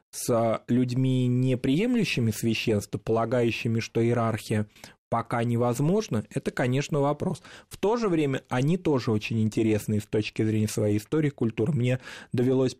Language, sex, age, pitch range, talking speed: Russian, male, 20-39, 115-150 Hz, 135 wpm